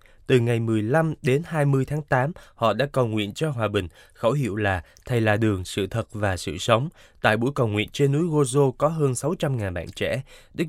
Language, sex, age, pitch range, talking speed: Vietnamese, male, 20-39, 105-140 Hz, 220 wpm